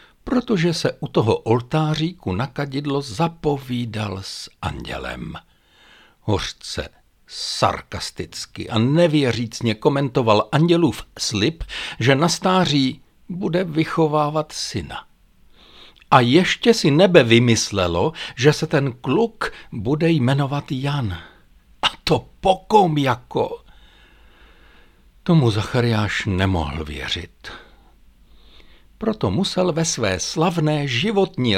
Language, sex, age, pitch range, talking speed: Czech, male, 60-79, 95-150 Hz, 95 wpm